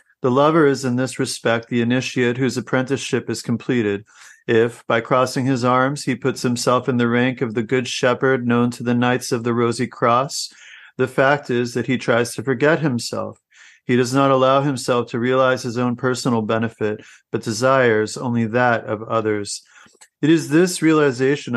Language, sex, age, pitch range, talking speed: English, male, 40-59, 120-135 Hz, 180 wpm